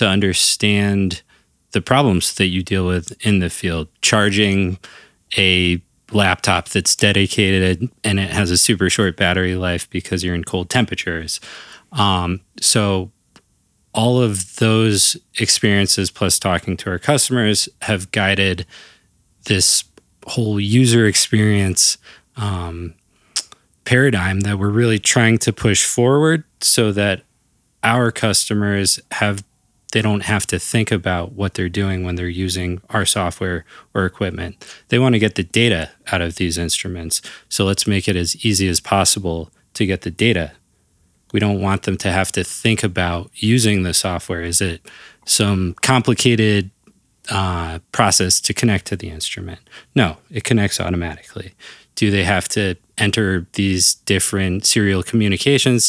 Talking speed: 145 wpm